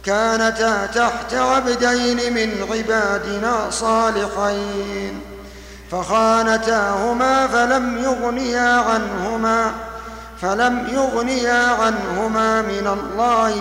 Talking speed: 65 wpm